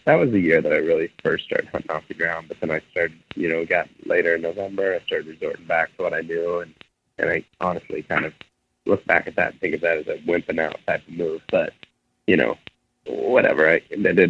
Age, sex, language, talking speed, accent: 30-49, male, English, 245 wpm, American